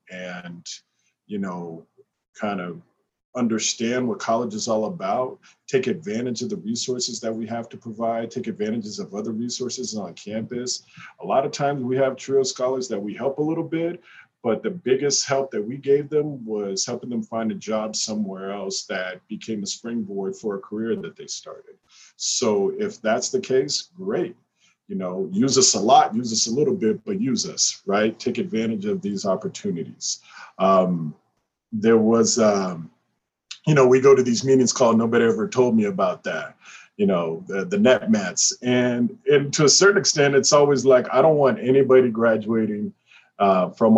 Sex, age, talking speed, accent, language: male, 50-69, 180 wpm, American, English